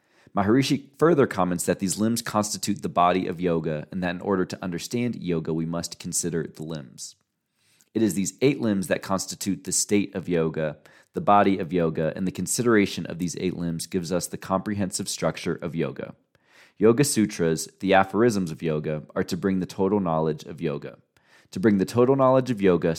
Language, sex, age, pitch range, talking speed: English, male, 30-49, 85-105 Hz, 190 wpm